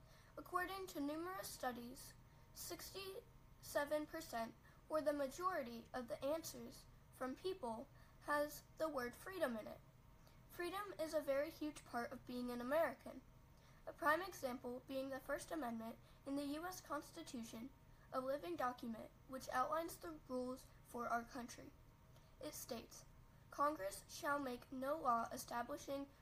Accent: American